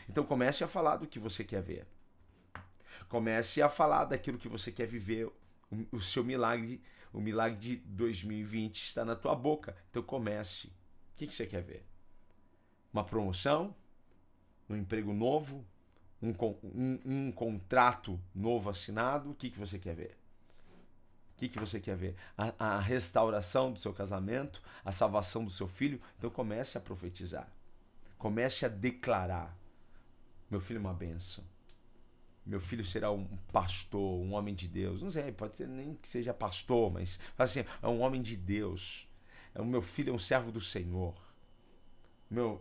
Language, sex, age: Portuguese, male, 40-59